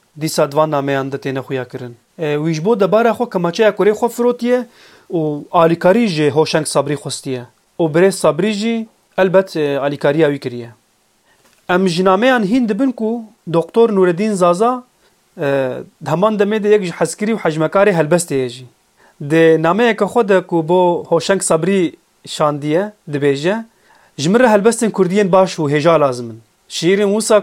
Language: Turkish